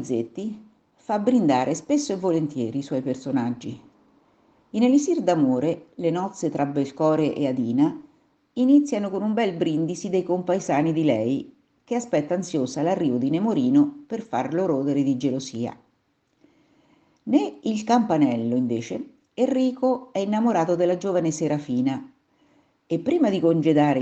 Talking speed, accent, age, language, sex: 125 wpm, native, 50-69, Italian, female